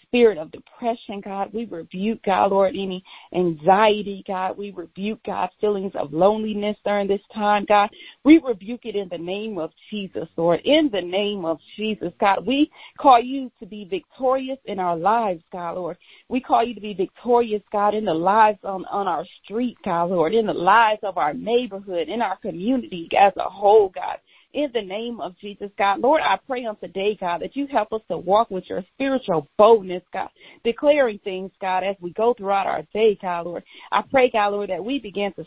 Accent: American